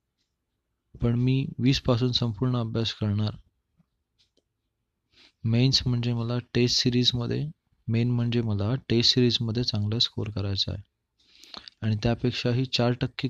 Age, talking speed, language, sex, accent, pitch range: 20-39, 115 wpm, Marathi, male, native, 105-125 Hz